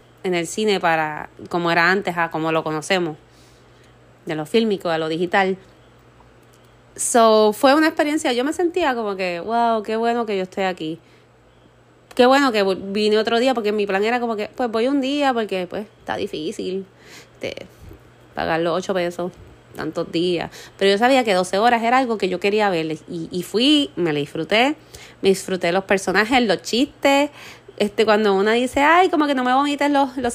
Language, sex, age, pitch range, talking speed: Spanish, female, 20-39, 190-255 Hz, 190 wpm